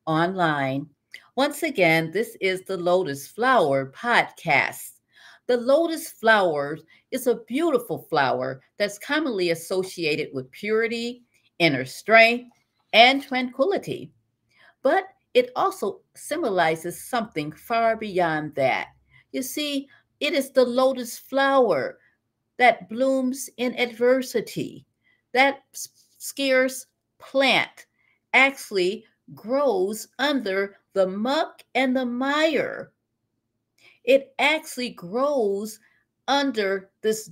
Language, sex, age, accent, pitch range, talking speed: English, female, 50-69, American, 165-265 Hz, 95 wpm